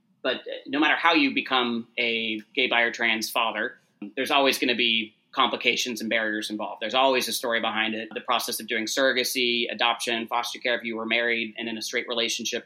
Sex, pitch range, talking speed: male, 115-125 Hz, 210 wpm